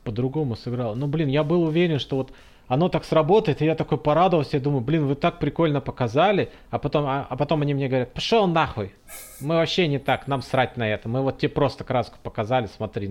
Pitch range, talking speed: 115-150 Hz, 220 wpm